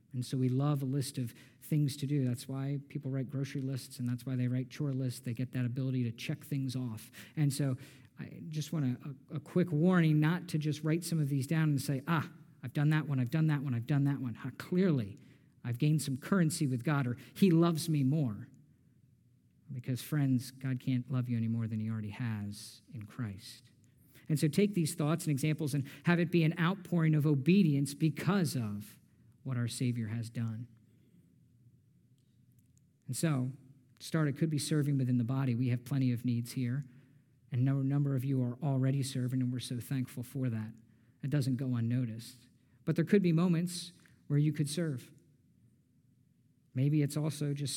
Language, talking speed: English, 200 wpm